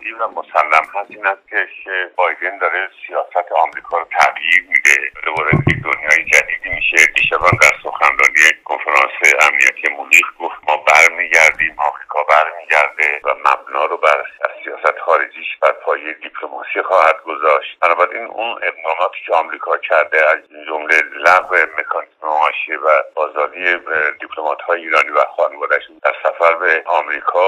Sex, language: male, Persian